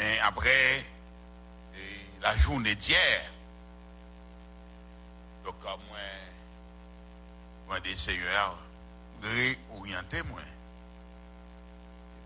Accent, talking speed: French, 90 wpm